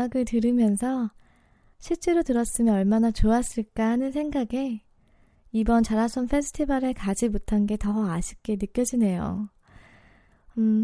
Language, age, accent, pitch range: Korean, 20-39, native, 210-260 Hz